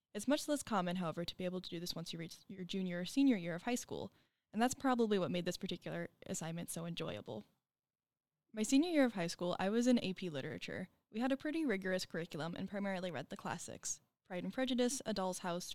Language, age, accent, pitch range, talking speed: English, 10-29, American, 180-245 Hz, 230 wpm